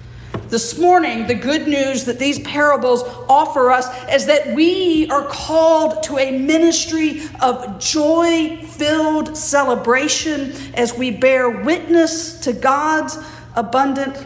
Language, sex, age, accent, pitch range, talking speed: English, female, 50-69, American, 180-265 Hz, 120 wpm